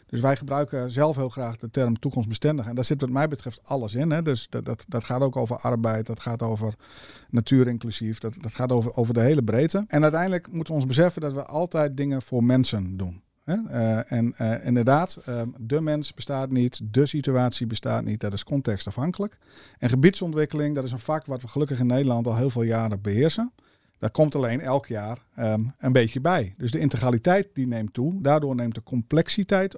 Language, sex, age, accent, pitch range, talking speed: Dutch, male, 50-69, Dutch, 120-150 Hz, 210 wpm